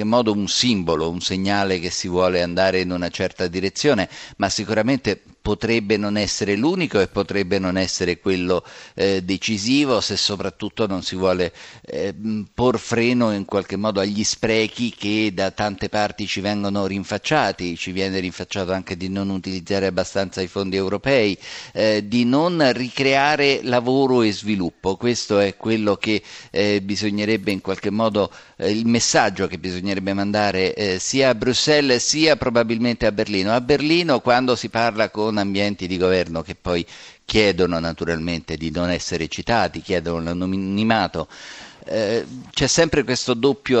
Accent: native